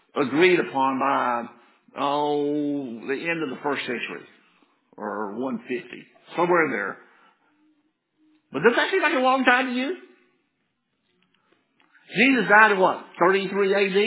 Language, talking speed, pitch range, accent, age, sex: English, 130 wpm, 175-255 Hz, American, 60-79, male